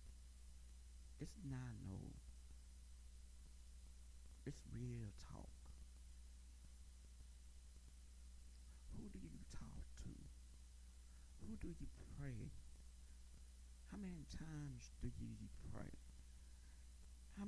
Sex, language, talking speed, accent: male, English, 75 wpm, American